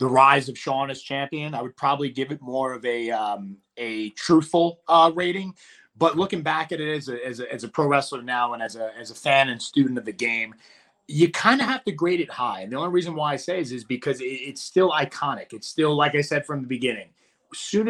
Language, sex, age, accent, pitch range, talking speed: English, male, 30-49, American, 125-175 Hz, 245 wpm